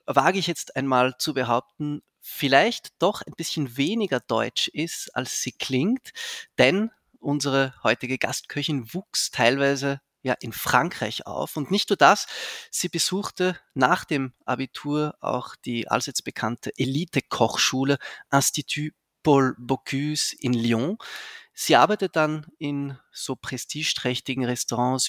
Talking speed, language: 125 wpm, German